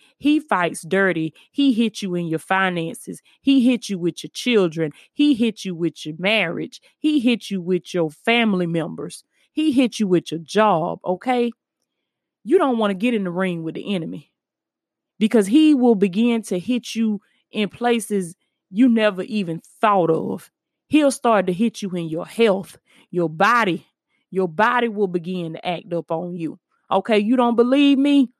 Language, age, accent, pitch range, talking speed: English, 20-39, American, 190-245 Hz, 175 wpm